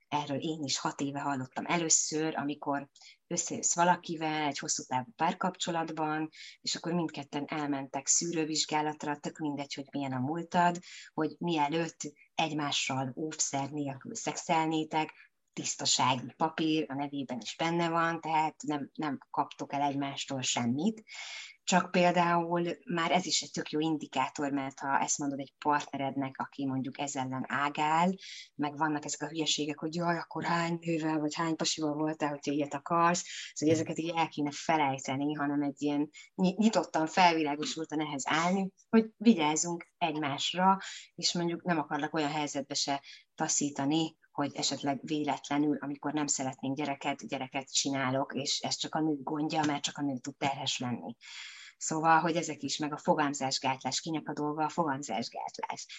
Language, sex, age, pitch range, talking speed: Hungarian, female, 20-39, 140-165 Hz, 150 wpm